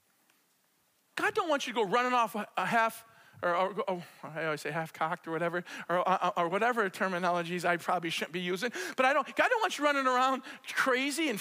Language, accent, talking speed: English, American, 220 wpm